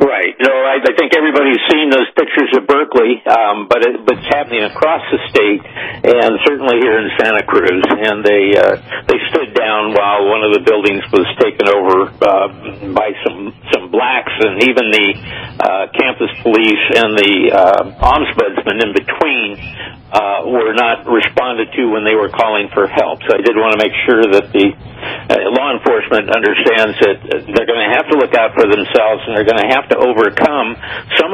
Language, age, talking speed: English, 60-79, 195 wpm